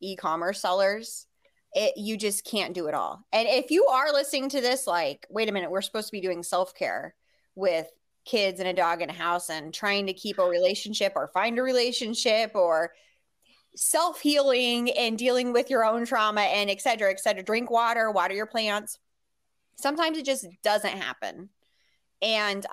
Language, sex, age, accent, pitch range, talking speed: English, female, 20-39, American, 175-220 Hz, 180 wpm